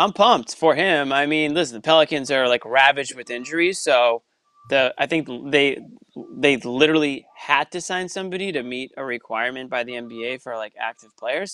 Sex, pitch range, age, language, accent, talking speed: male, 125-180 Hz, 20-39, English, American, 185 wpm